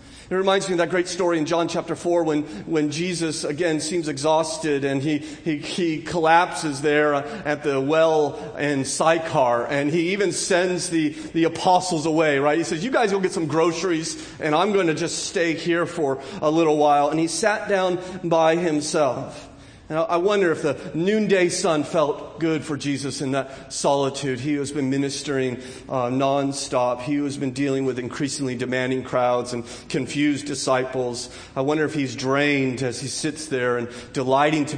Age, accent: 40-59, American